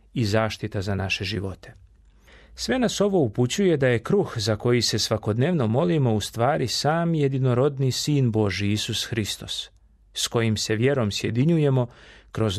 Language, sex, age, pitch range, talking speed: Croatian, male, 40-59, 105-135 Hz, 150 wpm